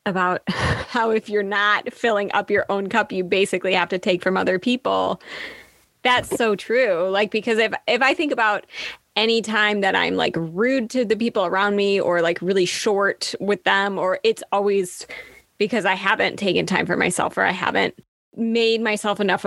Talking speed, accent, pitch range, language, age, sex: 190 wpm, American, 200-255 Hz, English, 20-39, female